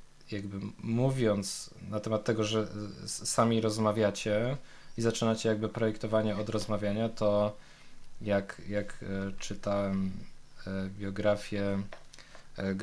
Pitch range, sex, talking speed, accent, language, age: 105-115 Hz, male, 105 wpm, native, Polish, 20-39